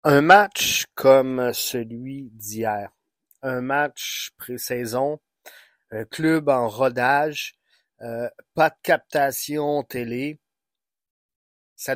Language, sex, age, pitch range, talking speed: French, male, 30-49, 120-150 Hz, 90 wpm